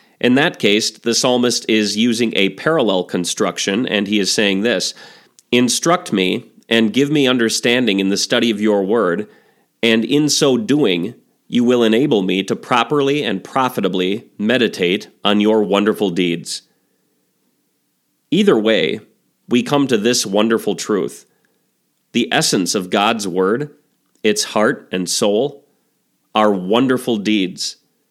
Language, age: English, 30-49